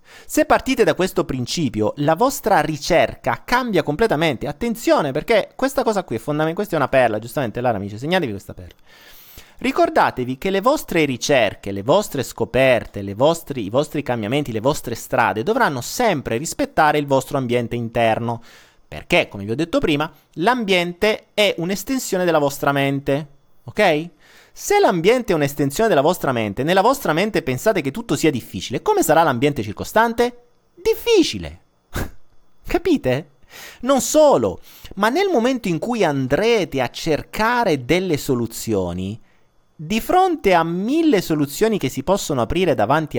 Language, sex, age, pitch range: Italian, male, 30-49, 135-220 Hz